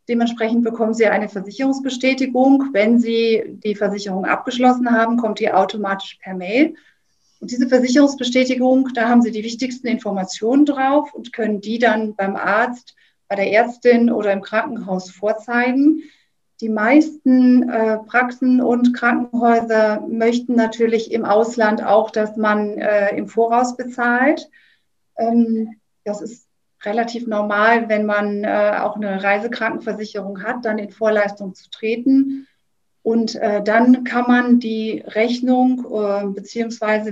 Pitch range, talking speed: 210-245 Hz, 130 wpm